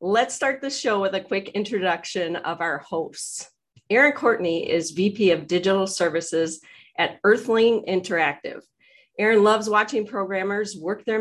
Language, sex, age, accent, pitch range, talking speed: English, female, 40-59, American, 175-235 Hz, 145 wpm